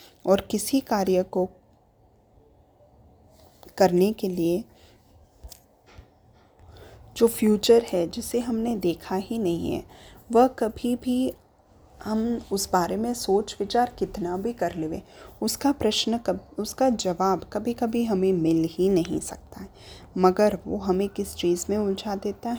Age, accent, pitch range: 20-39, native, 170-220 Hz